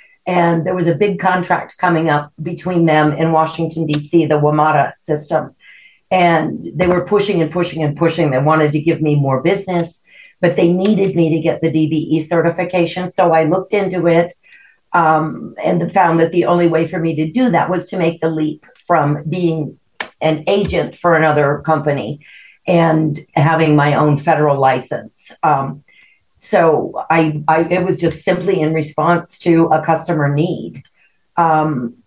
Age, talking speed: 50-69, 170 wpm